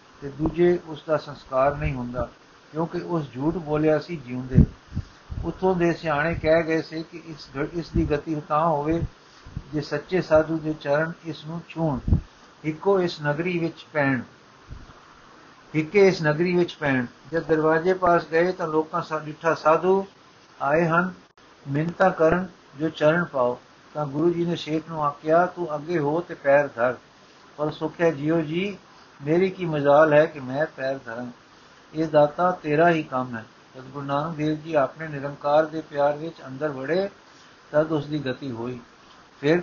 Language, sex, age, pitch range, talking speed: Punjabi, male, 60-79, 145-170 Hz, 115 wpm